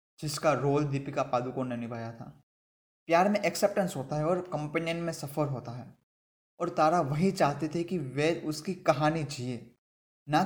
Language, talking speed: Hindi, 165 wpm